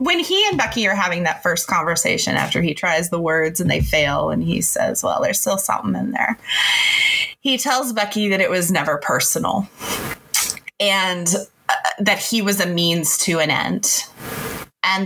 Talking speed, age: 180 wpm, 20-39